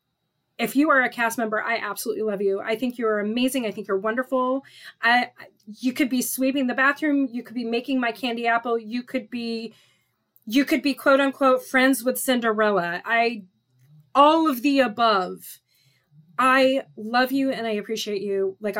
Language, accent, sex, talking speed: English, American, female, 180 wpm